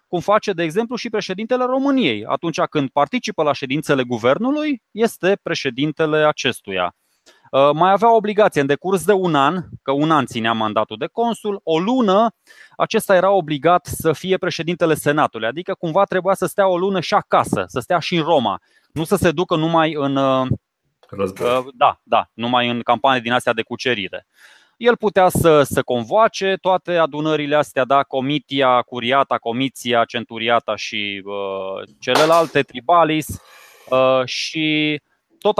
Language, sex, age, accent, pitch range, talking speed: Romanian, male, 20-39, native, 130-185 Hz, 155 wpm